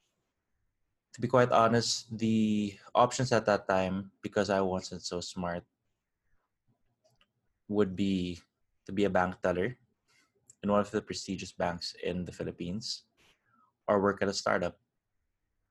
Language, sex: English, male